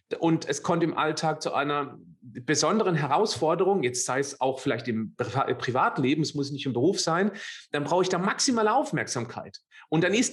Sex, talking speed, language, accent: male, 180 wpm, German, German